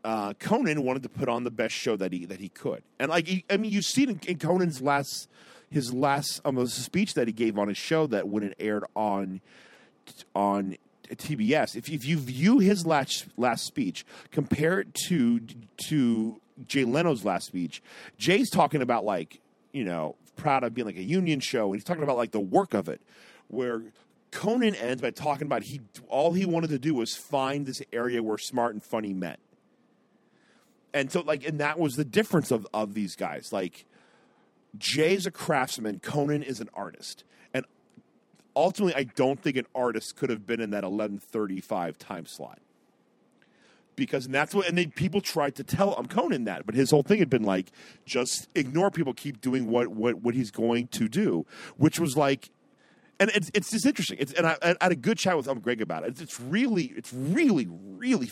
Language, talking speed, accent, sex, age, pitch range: English, 200 wpm, American, male, 40-59, 115-170 Hz